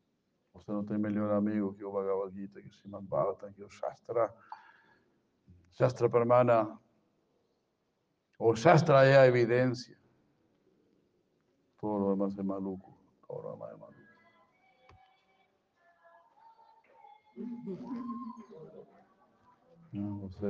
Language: Spanish